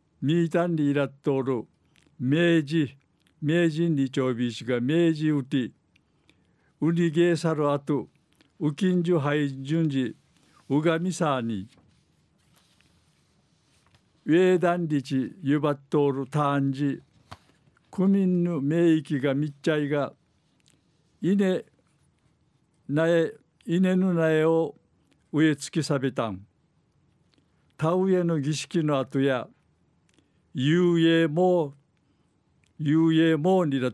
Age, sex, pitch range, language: 60-79, male, 140-165 Hz, Japanese